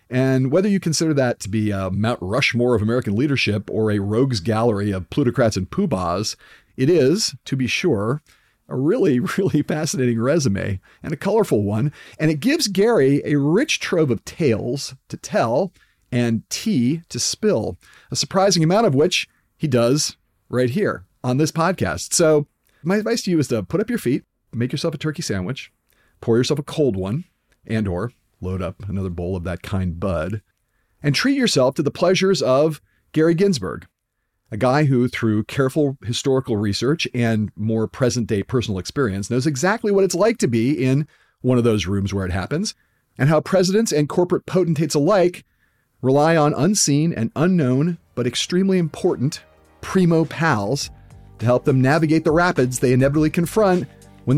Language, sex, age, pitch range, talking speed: English, male, 40-59, 110-160 Hz, 170 wpm